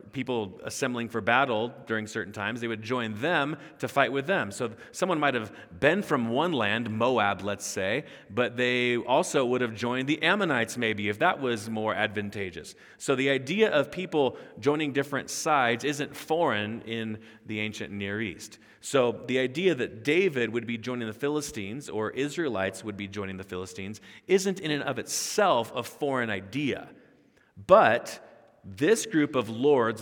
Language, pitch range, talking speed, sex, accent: English, 105-140 Hz, 170 wpm, male, American